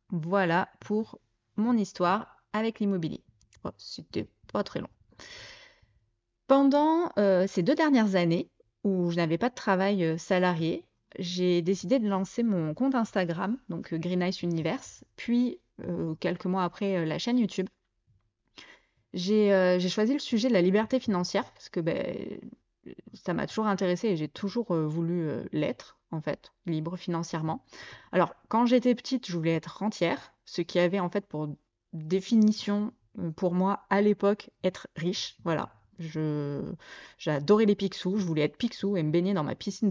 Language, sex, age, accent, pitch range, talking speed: French, female, 20-39, French, 165-210 Hz, 160 wpm